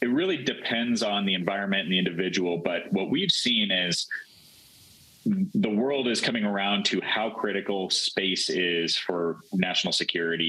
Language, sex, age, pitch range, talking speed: English, male, 30-49, 85-105 Hz, 155 wpm